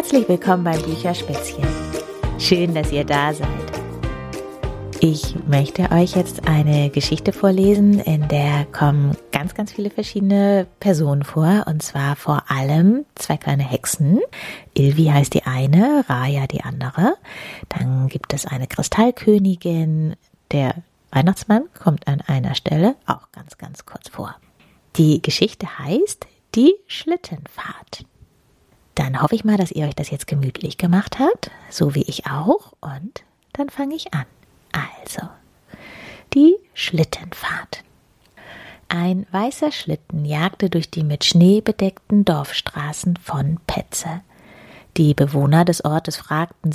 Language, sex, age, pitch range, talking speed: German, female, 30-49, 145-195 Hz, 130 wpm